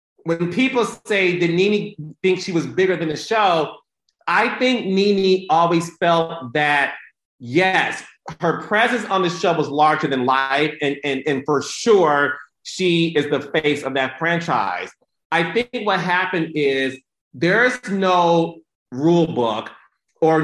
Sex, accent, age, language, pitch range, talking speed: male, American, 30-49, English, 150-195 Hz, 150 wpm